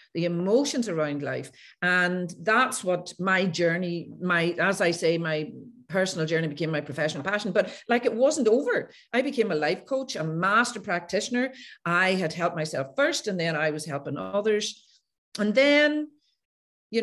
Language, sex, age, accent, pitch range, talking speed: English, female, 40-59, Irish, 165-235 Hz, 165 wpm